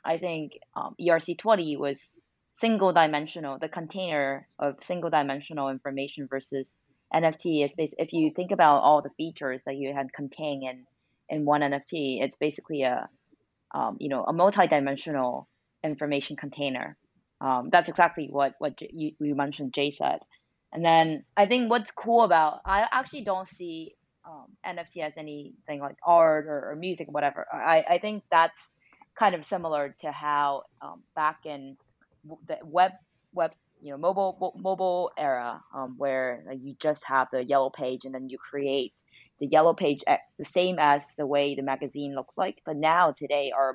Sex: female